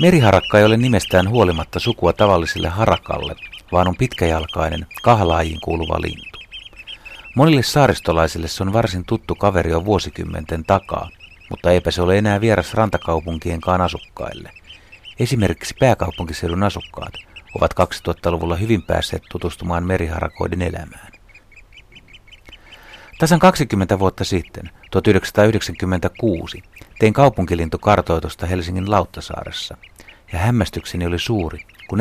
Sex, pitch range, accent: male, 85-105 Hz, native